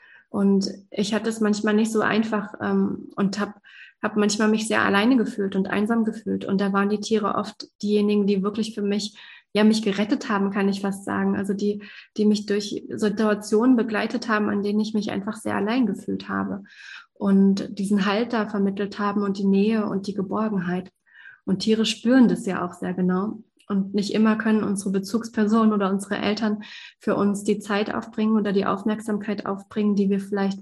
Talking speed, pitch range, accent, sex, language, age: 190 wpm, 200-220 Hz, German, female, German, 20-39